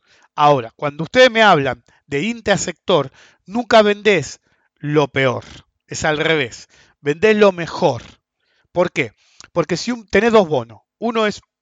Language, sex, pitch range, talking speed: English, male, 140-200 Hz, 135 wpm